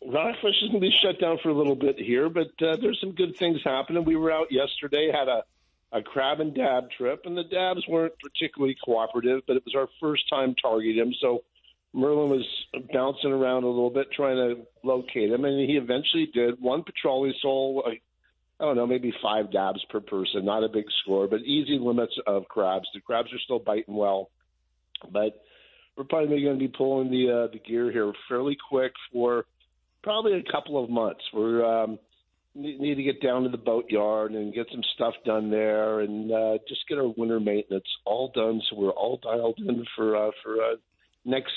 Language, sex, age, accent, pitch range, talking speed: English, male, 50-69, American, 110-140 Hz, 200 wpm